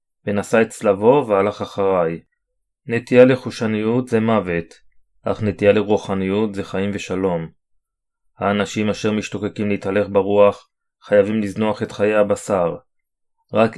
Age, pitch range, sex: 30-49, 100-115 Hz, male